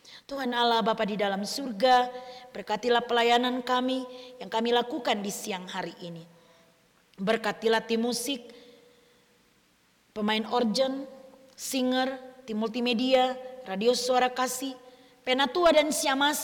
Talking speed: 110 wpm